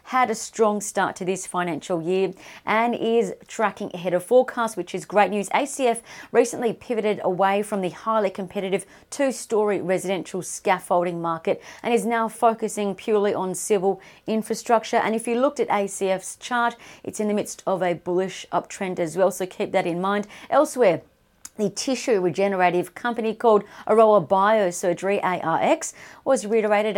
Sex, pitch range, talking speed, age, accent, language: female, 185-230 Hz, 160 wpm, 40-59, Australian, English